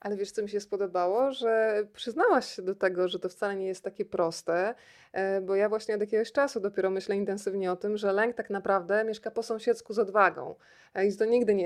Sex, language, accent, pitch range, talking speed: female, Polish, native, 185-225 Hz, 215 wpm